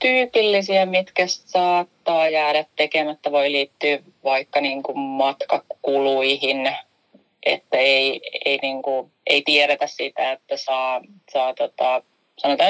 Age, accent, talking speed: 30-49, native, 85 wpm